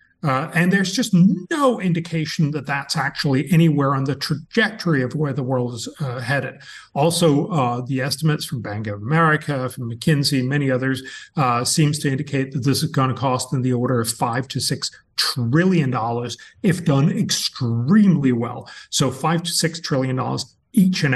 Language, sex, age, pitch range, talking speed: English, male, 40-59, 130-165 Hz, 175 wpm